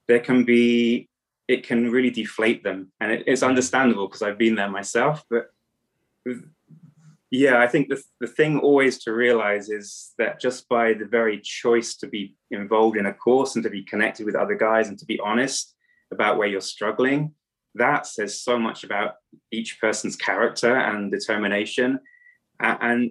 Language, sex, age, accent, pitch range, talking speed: English, male, 20-39, British, 105-125 Hz, 170 wpm